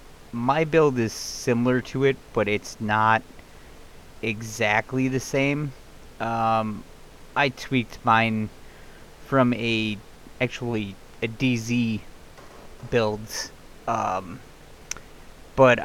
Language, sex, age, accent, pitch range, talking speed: English, male, 30-49, American, 110-130 Hz, 90 wpm